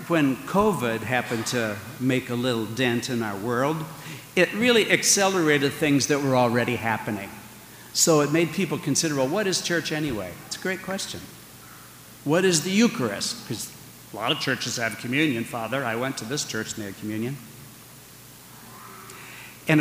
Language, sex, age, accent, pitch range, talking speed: English, male, 60-79, American, 115-150 Hz, 165 wpm